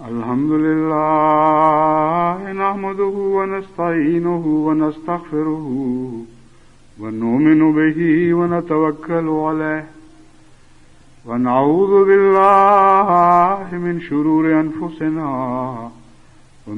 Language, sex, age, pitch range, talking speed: English, male, 60-79, 130-175 Hz, 70 wpm